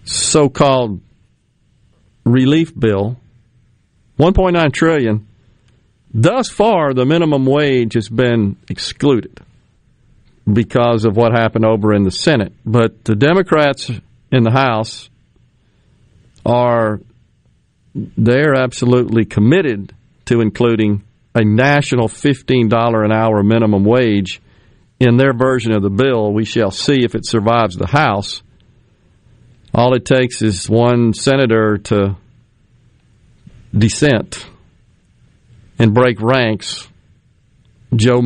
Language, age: English, 50-69